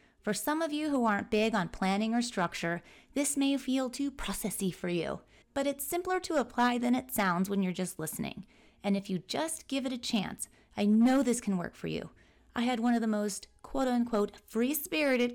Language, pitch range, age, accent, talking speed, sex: English, 200-270 Hz, 30-49, American, 205 wpm, female